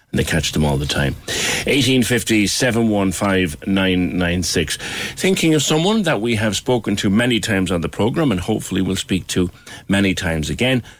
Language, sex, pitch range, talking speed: English, male, 90-110 Hz, 160 wpm